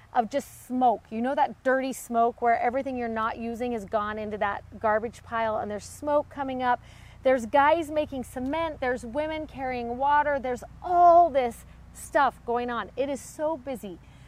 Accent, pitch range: American, 225-280 Hz